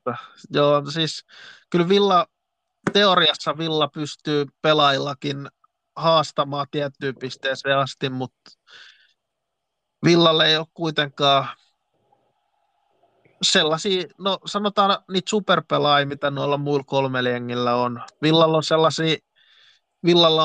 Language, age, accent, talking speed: Finnish, 20-39, native, 95 wpm